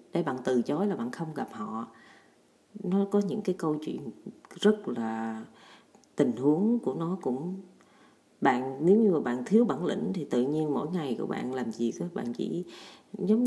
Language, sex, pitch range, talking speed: Vietnamese, female, 140-205 Hz, 190 wpm